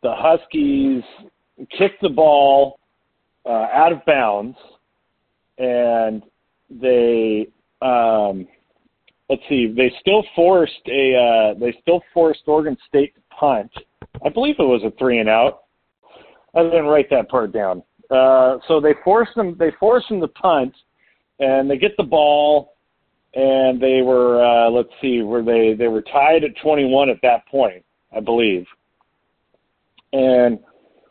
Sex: male